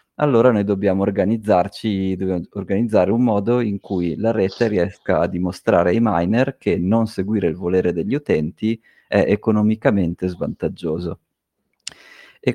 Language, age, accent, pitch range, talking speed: Italian, 30-49, native, 90-110 Hz, 135 wpm